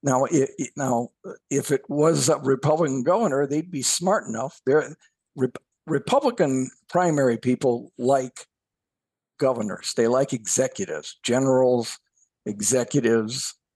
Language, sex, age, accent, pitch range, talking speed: English, male, 60-79, American, 120-160 Hz, 110 wpm